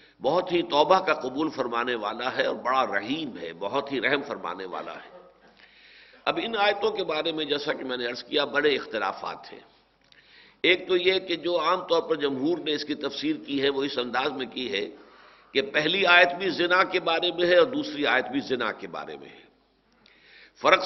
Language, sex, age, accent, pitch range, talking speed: English, male, 60-79, Indian, 145-190 Hz, 210 wpm